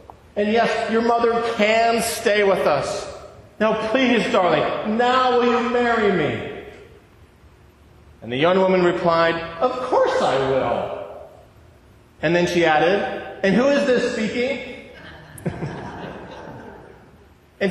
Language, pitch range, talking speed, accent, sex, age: English, 190-245 Hz, 120 wpm, American, male, 40-59